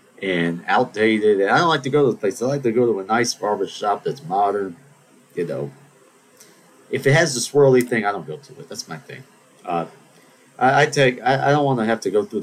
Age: 40-59